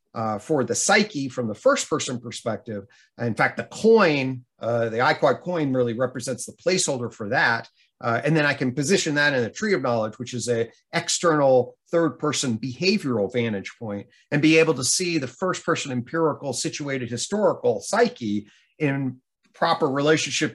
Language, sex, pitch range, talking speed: English, male, 125-160 Hz, 170 wpm